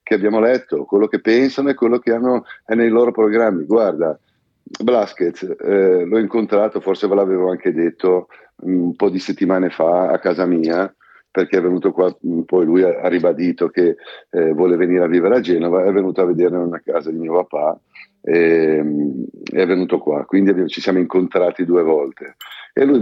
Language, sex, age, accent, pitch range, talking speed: Italian, male, 50-69, native, 90-115 Hz, 185 wpm